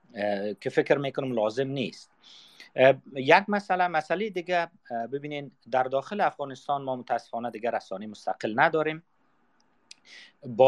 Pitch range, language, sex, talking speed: 110-140 Hz, Persian, male, 110 wpm